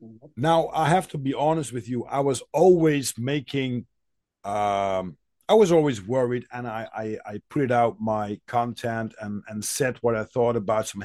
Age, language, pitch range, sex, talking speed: 50-69, English, 110-145 Hz, male, 180 wpm